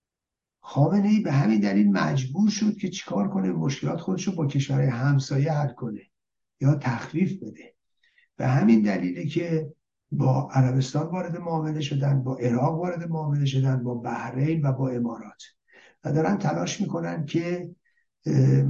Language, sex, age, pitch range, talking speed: Persian, male, 60-79, 130-155 Hz, 140 wpm